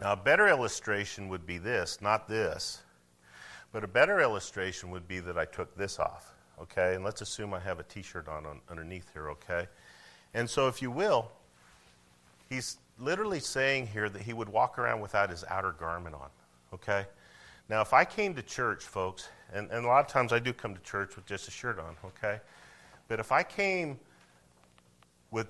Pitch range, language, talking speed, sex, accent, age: 75-115 Hz, English, 195 wpm, male, American, 40-59